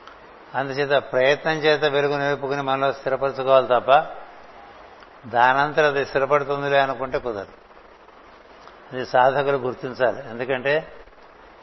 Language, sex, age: Telugu, male, 60-79